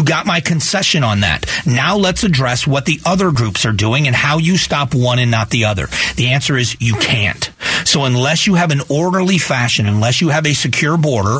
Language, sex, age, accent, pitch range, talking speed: English, male, 40-59, American, 120-155 Hz, 215 wpm